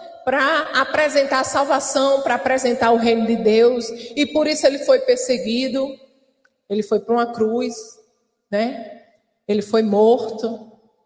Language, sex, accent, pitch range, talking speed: Portuguese, female, Brazilian, 225-335 Hz, 135 wpm